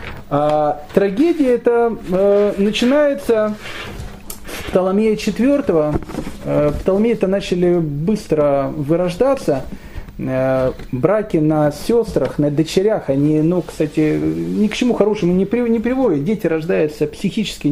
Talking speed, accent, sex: 105 wpm, native, male